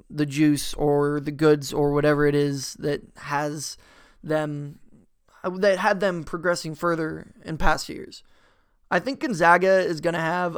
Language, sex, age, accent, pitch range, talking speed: English, male, 20-39, American, 155-175 Hz, 155 wpm